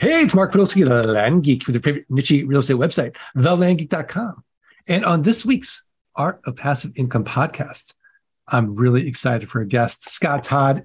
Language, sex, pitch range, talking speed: English, male, 135-190 Hz, 175 wpm